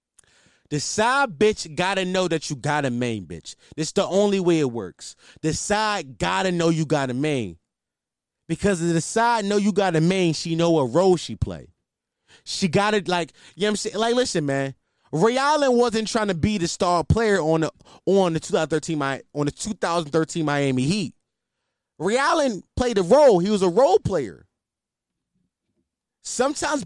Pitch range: 150-215 Hz